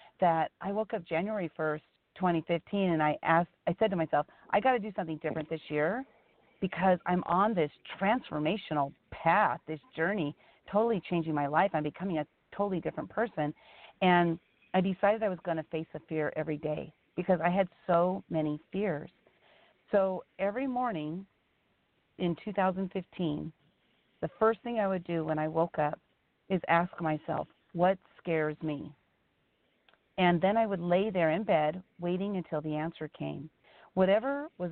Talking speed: 160 wpm